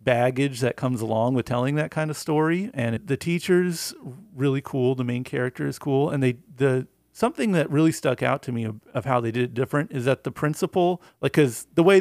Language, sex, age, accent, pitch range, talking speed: English, male, 40-59, American, 120-170 Hz, 225 wpm